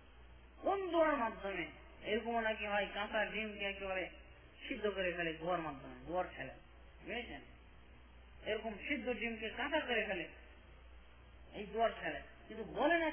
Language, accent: Bengali, native